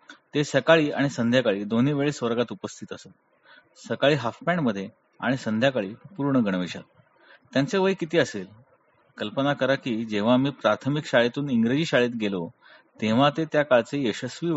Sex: male